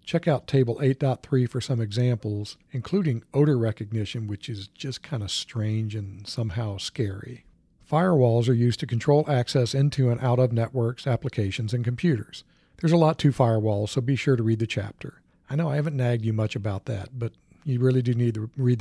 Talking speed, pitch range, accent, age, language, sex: 195 wpm, 110-135 Hz, American, 50-69, English, male